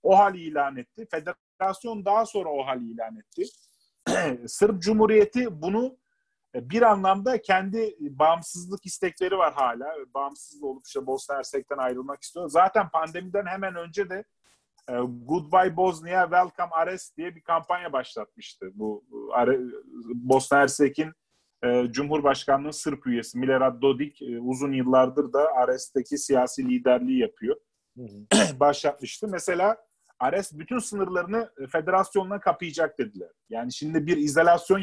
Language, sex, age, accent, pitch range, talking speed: Turkish, male, 40-59, native, 140-195 Hz, 115 wpm